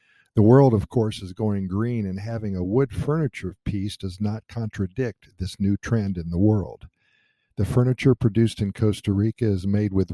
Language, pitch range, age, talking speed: English, 95-115 Hz, 50-69, 185 wpm